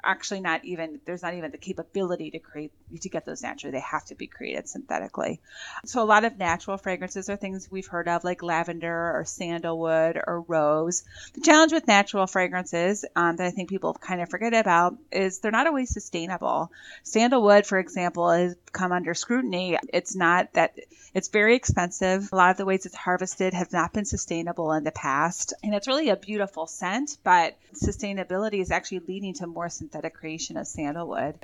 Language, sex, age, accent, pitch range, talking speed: English, female, 30-49, American, 170-200 Hz, 195 wpm